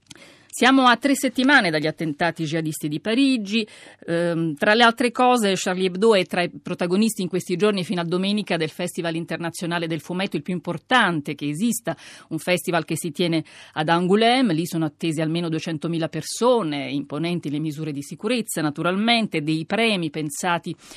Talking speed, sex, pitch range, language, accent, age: 165 wpm, female, 160-215 Hz, Italian, native, 40-59